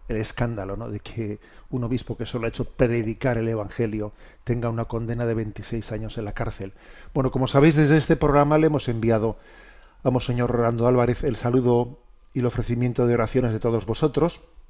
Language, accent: Spanish, Spanish